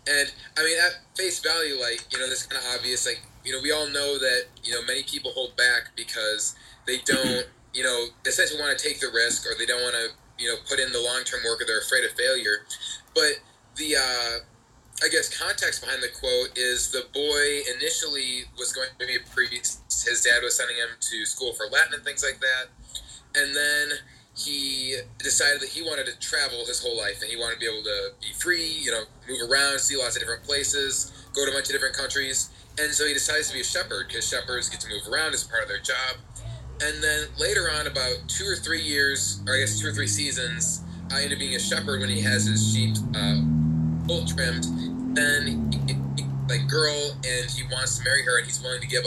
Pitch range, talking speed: 115-145 Hz, 225 wpm